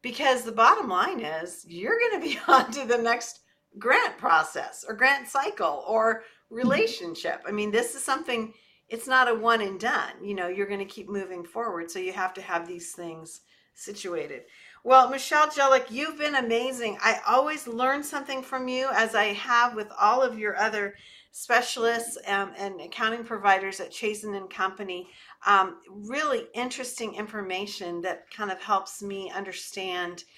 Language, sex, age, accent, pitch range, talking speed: English, female, 50-69, American, 190-245 Hz, 170 wpm